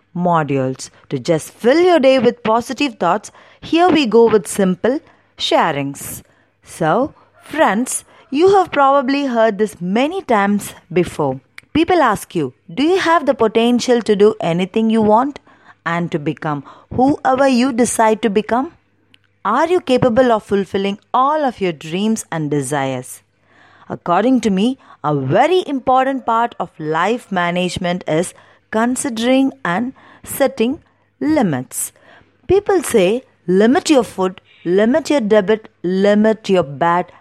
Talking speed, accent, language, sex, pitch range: 135 wpm, native, Tamil, female, 175-260 Hz